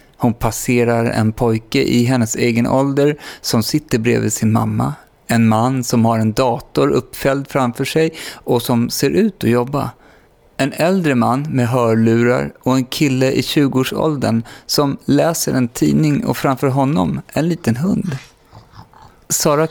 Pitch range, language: 115-145 Hz, Swedish